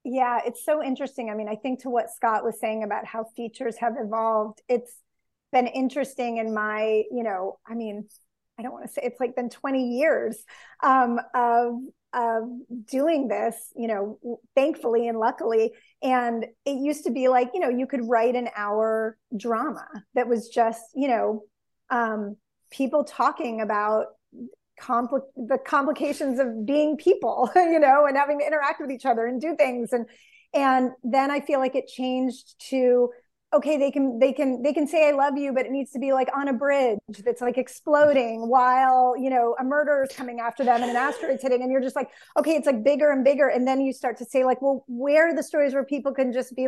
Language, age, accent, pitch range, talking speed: English, 30-49, American, 235-275 Hz, 205 wpm